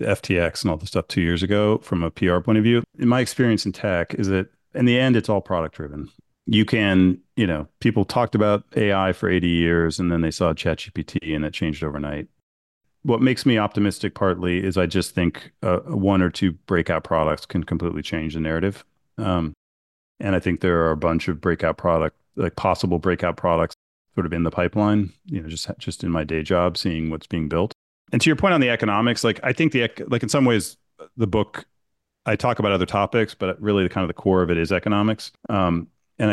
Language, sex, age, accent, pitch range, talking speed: English, male, 40-59, American, 85-105 Hz, 225 wpm